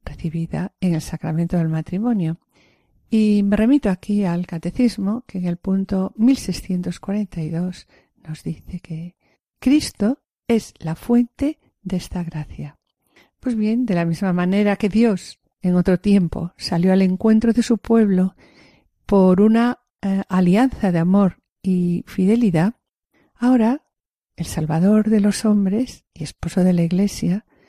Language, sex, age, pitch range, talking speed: Spanish, female, 50-69, 175-215 Hz, 135 wpm